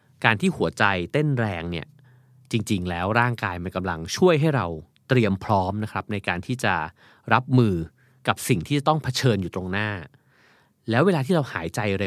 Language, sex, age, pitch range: Thai, male, 30-49, 100-135 Hz